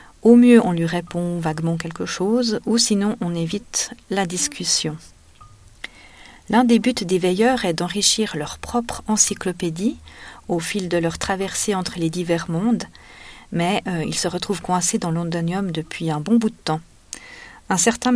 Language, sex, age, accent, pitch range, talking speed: French, female, 40-59, French, 175-215 Hz, 160 wpm